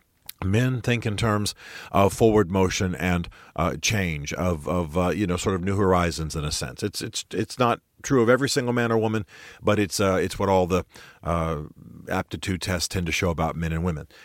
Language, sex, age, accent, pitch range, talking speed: English, male, 40-59, American, 90-110 Hz, 225 wpm